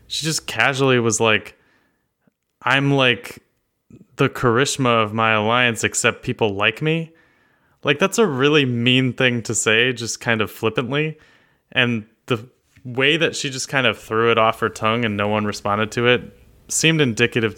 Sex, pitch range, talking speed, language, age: male, 105-125 Hz, 165 wpm, English, 20-39